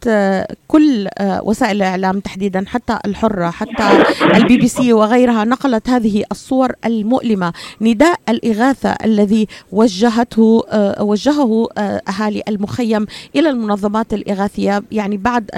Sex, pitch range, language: female, 205-245 Hz, Arabic